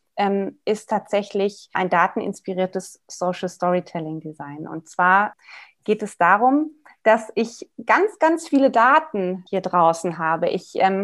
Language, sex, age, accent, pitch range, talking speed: German, female, 30-49, German, 195-245 Hz, 125 wpm